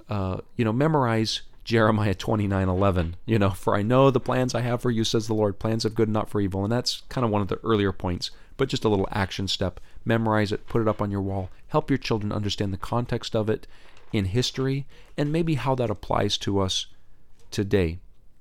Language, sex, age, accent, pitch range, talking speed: English, male, 40-59, American, 95-120 Hz, 225 wpm